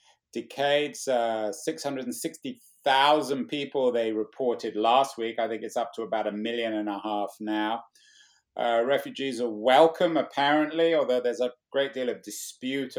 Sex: male